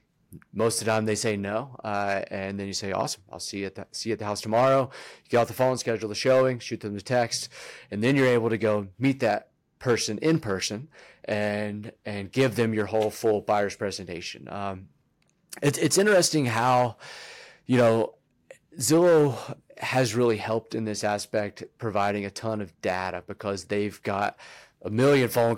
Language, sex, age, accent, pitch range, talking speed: English, male, 30-49, American, 100-120 Hz, 190 wpm